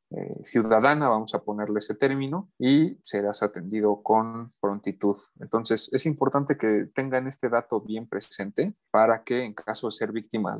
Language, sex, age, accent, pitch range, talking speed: Spanish, male, 30-49, Mexican, 110-135 Hz, 160 wpm